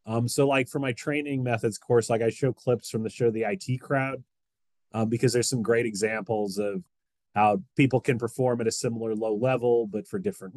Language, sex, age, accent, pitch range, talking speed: English, male, 30-49, American, 105-130 Hz, 210 wpm